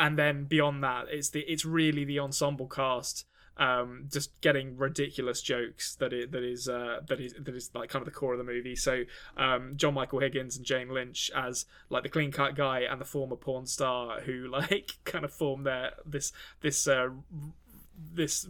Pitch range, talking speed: 135-160 Hz, 200 wpm